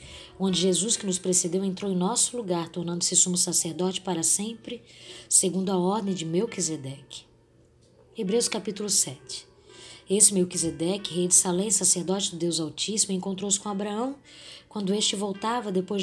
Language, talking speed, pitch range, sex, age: Portuguese, 140 wpm, 175-205 Hz, female, 20-39